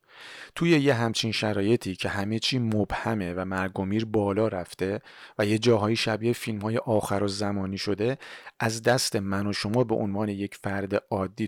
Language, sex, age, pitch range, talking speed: Persian, male, 40-59, 100-120 Hz, 165 wpm